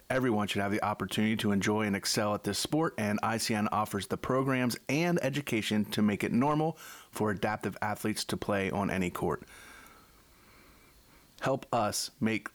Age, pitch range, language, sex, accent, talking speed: 30-49, 100-130 Hz, English, male, American, 165 wpm